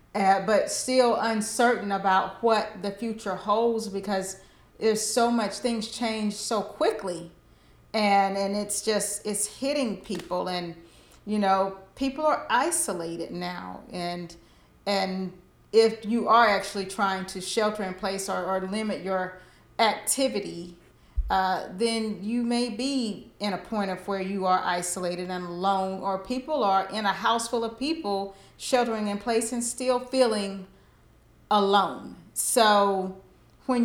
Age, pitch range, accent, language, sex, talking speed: 40-59, 190-230 Hz, American, English, female, 140 wpm